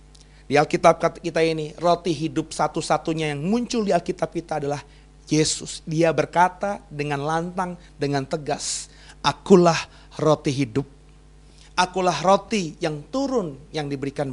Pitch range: 140-160 Hz